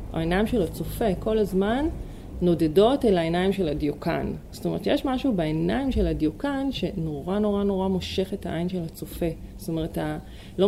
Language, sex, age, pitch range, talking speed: Hebrew, female, 30-49, 160-205 Hz, 170 wpm